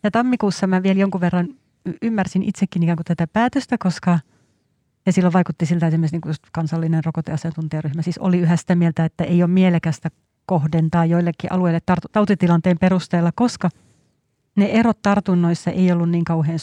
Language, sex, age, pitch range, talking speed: Finnish, female, 30-49, 165-195 Hz, 150 wpm